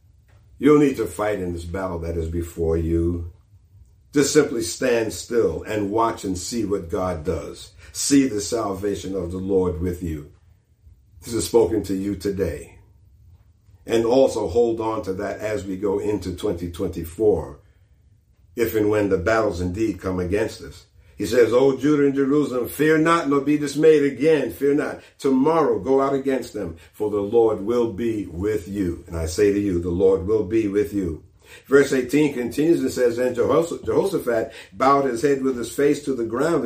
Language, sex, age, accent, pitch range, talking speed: English, male, 50-69, American, 95-135 Hz, 180 wpm